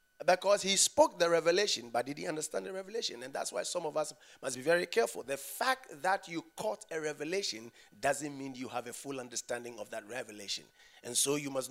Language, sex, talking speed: English, male, 220 wpm